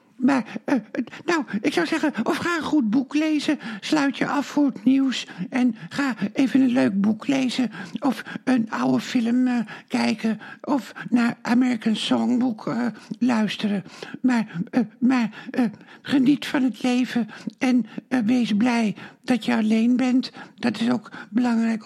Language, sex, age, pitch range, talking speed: Dutch, male, 60-79, 215-265 Hz, 160 wpm